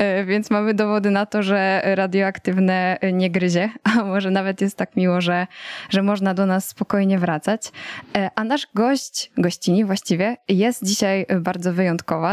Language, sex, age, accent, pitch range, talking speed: Polish, female, 10-29, native, 180-210 Hz, 150 wpm